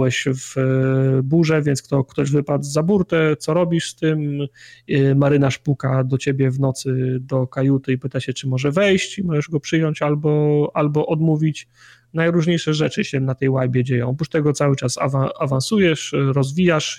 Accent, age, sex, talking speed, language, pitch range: native, 30-49, male, 165 wpm, Polish, 140-155 Hz